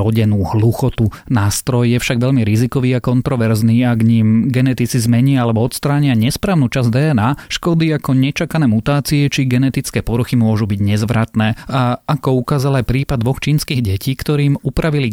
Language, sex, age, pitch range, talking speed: Slovak, male, 30-49, 115-135 Hz, 155 wpm